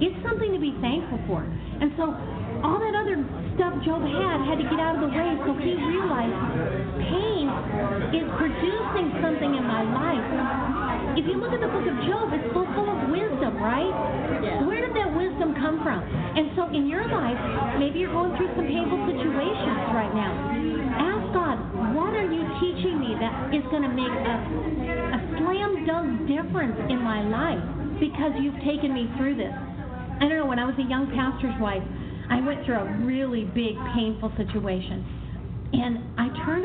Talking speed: 180 wpm